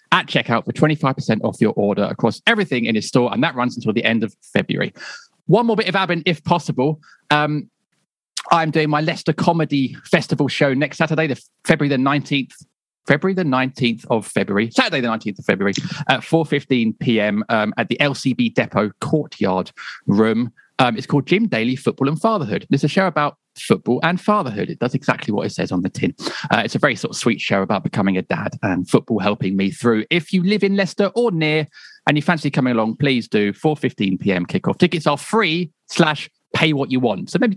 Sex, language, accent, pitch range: male, English, British, 120-175 Hz